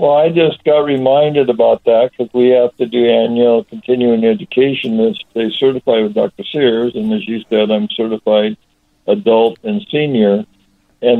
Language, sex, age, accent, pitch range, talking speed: English, male, 60-79, American, 115-135 Hz, 160 wpm